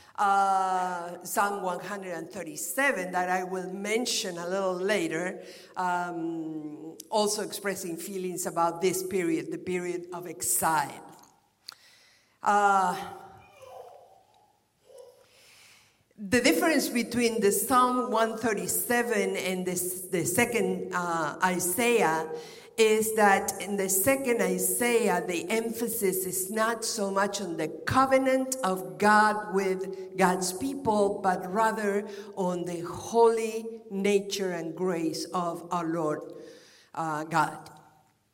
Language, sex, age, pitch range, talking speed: English, female, 50-69, 175-225 Hz, 105 wpm